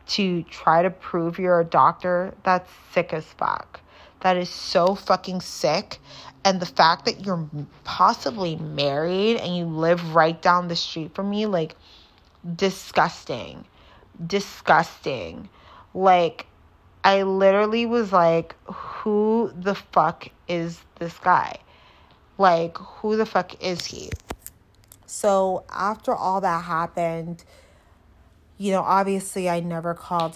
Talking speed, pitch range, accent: 125 wpm, 165-200 Hz, American